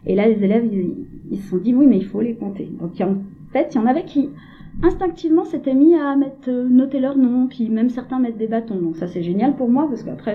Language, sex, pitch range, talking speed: French, female, 170-230 Hz, 285 wpm